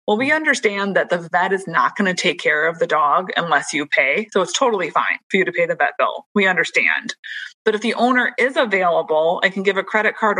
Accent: American